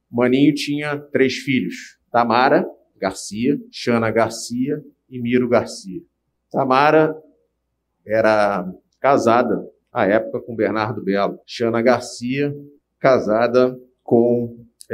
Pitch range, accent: 110-145 Hz, Brazilian